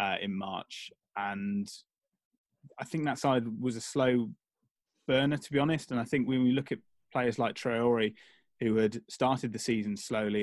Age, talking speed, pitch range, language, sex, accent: 20-39, 180 wpm, 110-125 Hz, English, male, British